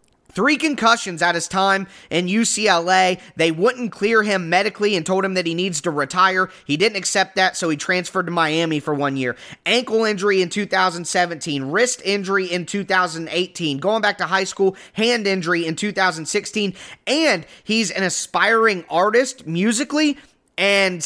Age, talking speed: 20-39, 160 wpm